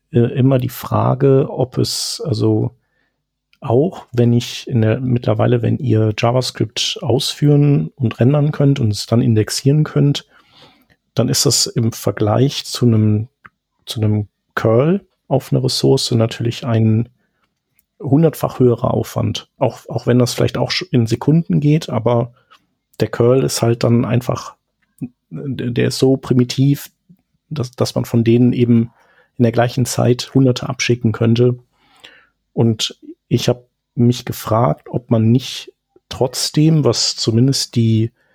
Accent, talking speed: German, 135 wpm